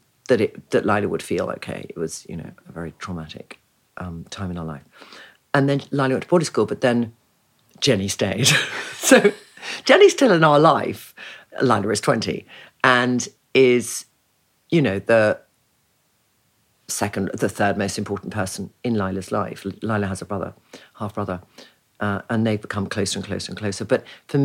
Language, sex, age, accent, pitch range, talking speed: English, female, 50-69, British, 105-135 Hz, 165 wpm